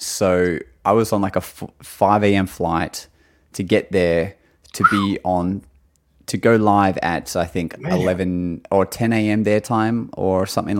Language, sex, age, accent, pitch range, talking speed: English, male, 20-39, Australian, 85-105 Hz, 165 wpm